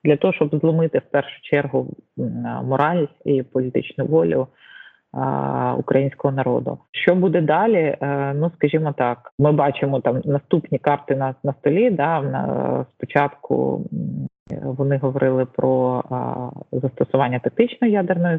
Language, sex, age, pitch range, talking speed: Ukrainian, female, 30-49, 130-150 Hz, 125 wpm